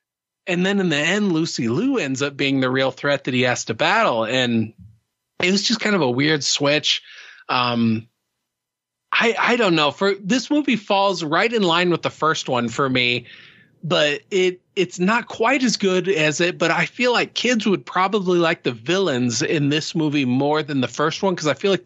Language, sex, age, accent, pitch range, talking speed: English, male, 30-49, American, 135-190 Hz, 210 wpm